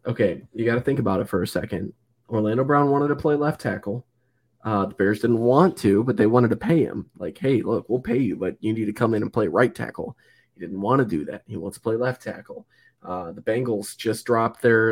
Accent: American